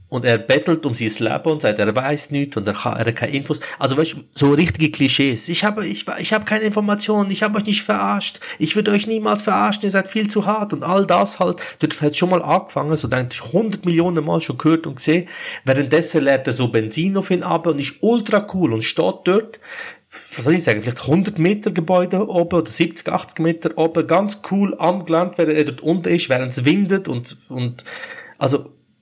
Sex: male